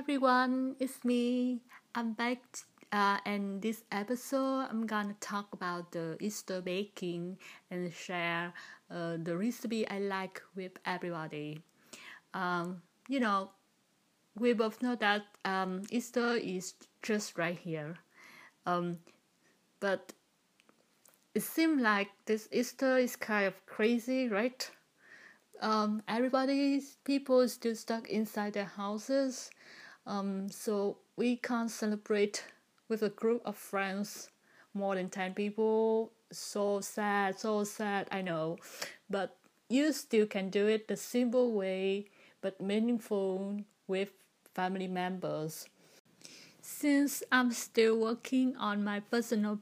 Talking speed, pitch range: 120 wpm, 195-240 Hz